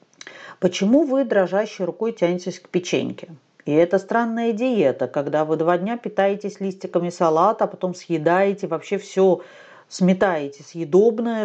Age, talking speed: 40-59, 130 wpm